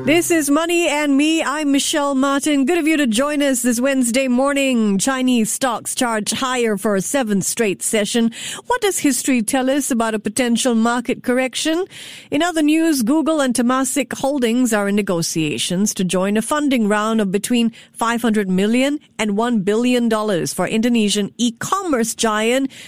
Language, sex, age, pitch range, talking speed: English, female, 50-69, 210-265 Hz, 165 wpm